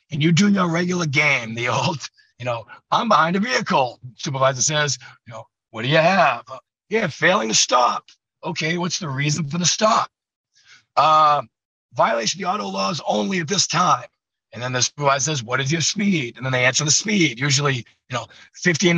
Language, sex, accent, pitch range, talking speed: English, male, American, 130-175 Hz, 200 wpm